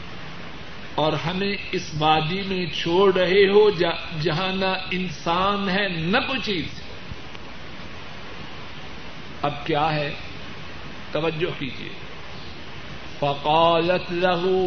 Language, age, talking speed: Urdu, 60-79, 90 wpm